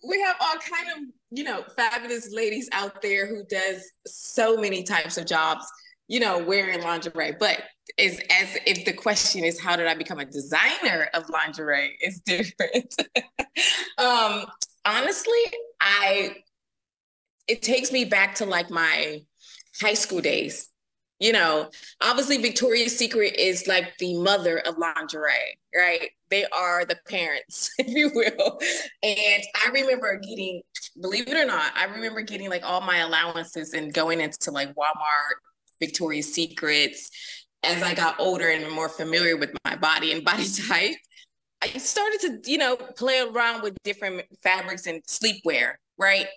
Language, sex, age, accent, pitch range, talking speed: English, female, 20-39, American, 165-235 Hz, 155 wpm